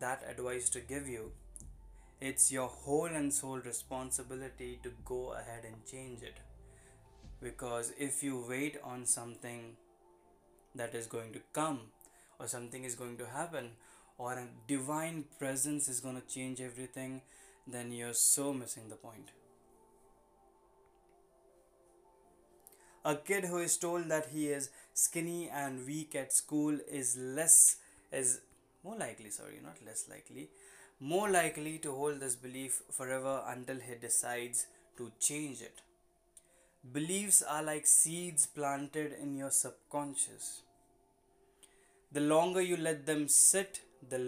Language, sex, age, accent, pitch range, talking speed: Hindi, male, 20-39, native, 125-155 Hz, 135 wpm